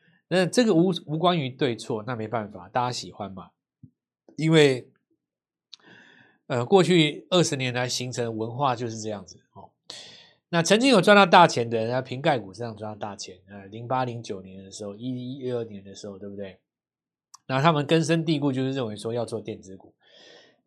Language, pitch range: Chinese, 115-160 Hz